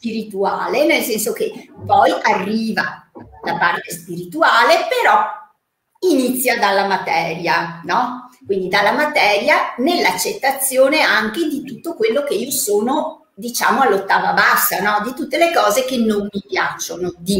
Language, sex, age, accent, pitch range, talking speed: Italian, female, 50-69, native, 190-305 Hz, 130 wpm